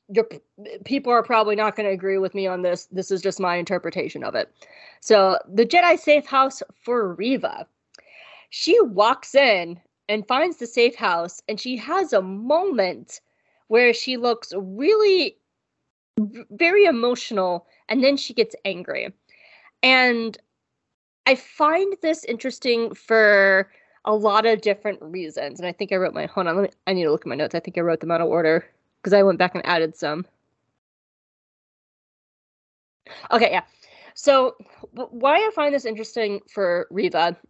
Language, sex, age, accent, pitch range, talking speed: English, female, 20-39, American, 195-260 Hz, 160 wpm